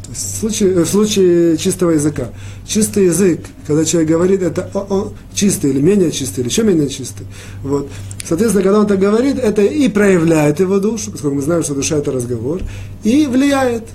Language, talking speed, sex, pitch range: Russian, 180 wpm, male, 125-195 Hz